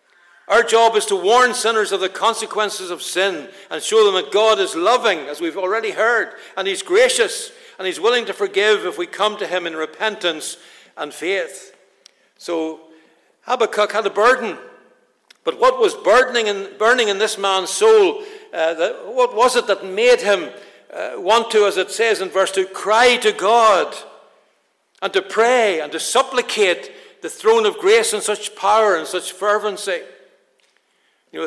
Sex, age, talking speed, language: male, 60-79, 175 wpm, English